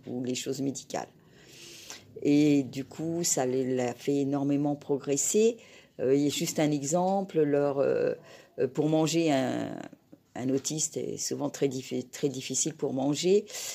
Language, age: French, 50-69